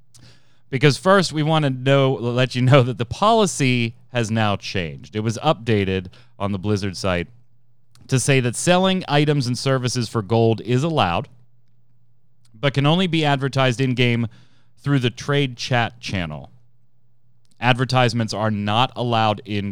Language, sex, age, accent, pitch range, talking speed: English, male, 30-49, American, 110-135 Hz, 150 wpm